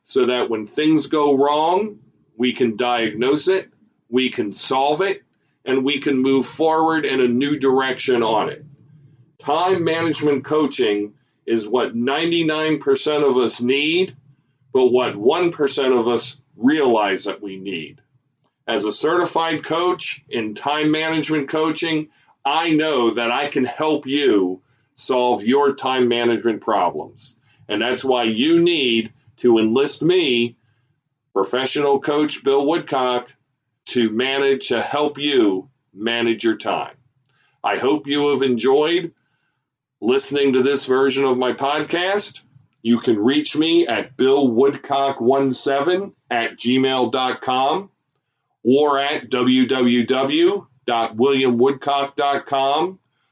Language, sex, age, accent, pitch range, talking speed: English, male, 40-59, American, 125-150 Hz, 120 wpm